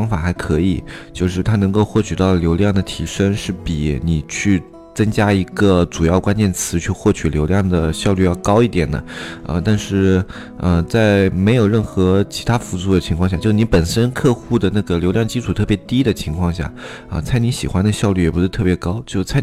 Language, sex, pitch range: Chinese, male, 85-105 Hz